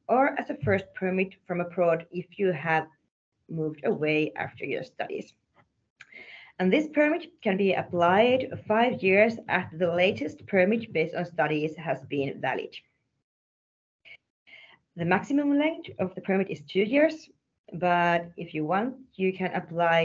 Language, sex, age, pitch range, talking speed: Finnish, female, 30-49, 160-220 Hz, 145 wpm